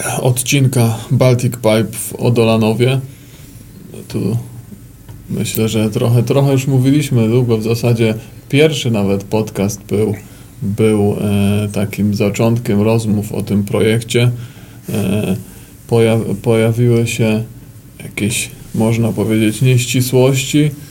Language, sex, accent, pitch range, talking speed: Polish, male, native, 110-130 Hz, 90 wpm